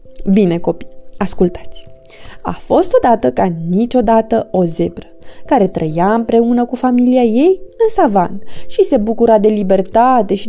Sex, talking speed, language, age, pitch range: female, 135 wpm, Romanian, 20-39, 185-260 Hz